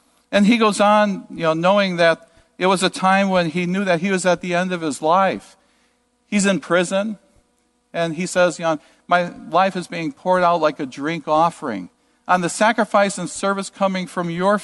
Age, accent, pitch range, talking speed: 50-69, American, 170-235 Hz, 205 wpm